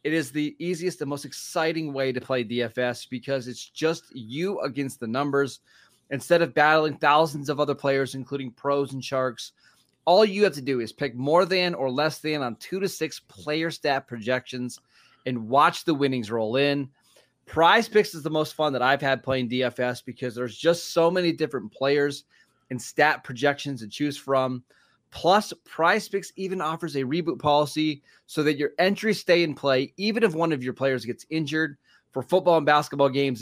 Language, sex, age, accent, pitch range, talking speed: English, male, 20-39, American, 130-165 Hz, 190 wpm